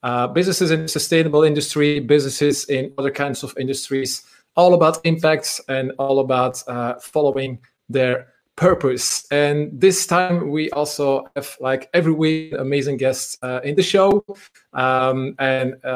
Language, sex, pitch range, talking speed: English, male, 135-160 Hz, 145 wpm